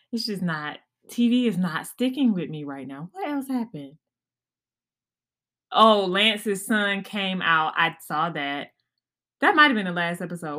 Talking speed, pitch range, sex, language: 160 wpm, 165-235 Hz, female, English